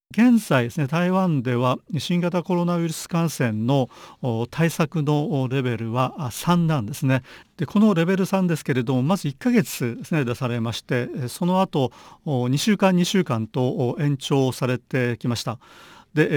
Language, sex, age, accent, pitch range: Japanese, male, 40-59, native, 120-175 Hz